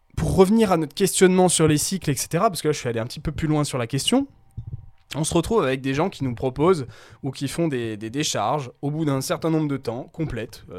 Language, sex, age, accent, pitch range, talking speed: French, male, 20-39, French, 120-160 Hz, 255 wpm